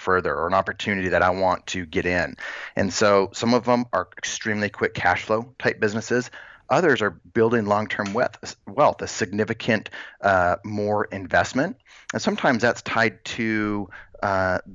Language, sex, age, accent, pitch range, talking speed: English, male, 30-49, American, 95-110 Hz, 160 wpm